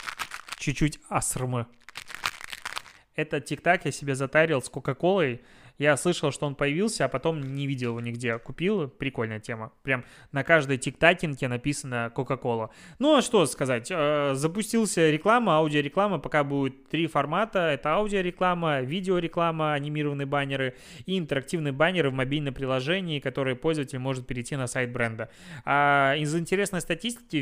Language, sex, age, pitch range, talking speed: Russian, male, 20-39, 135-160 Hz, 135 wpm